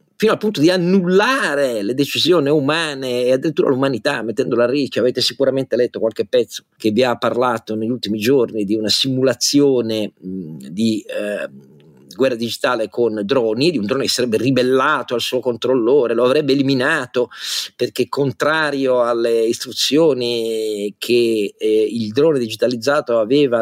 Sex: male